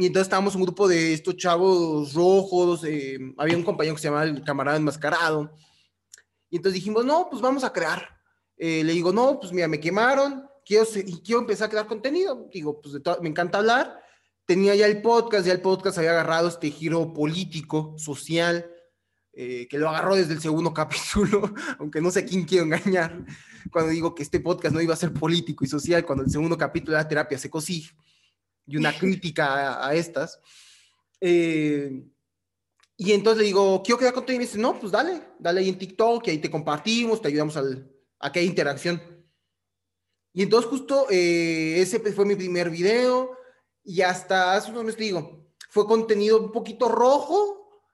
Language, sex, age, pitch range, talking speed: Spanish, male, 20-39, 155-215 Hz, 190 wpm